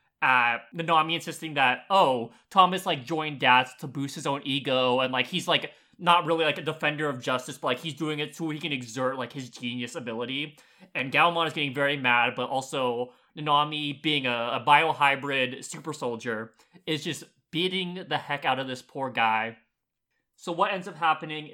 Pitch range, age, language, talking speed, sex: 135-175 Hz, 20-39, English, 190 wpm, male